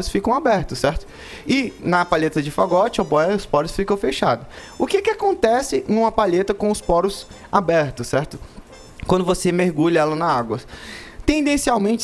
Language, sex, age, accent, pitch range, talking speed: Portuguese, male, 20-39, Brazilian, 170-215 Hz, 155 wpm